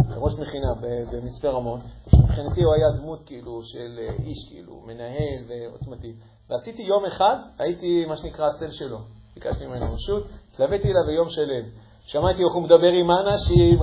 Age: 50-69